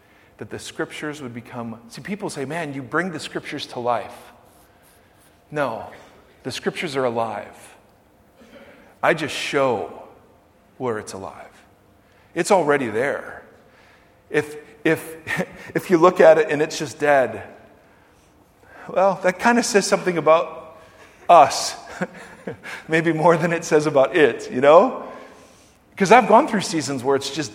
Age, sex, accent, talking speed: 40-59, male, American, 140 wpm